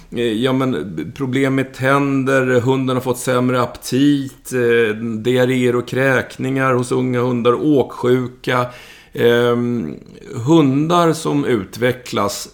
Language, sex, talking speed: Swedish, male, 100 wpm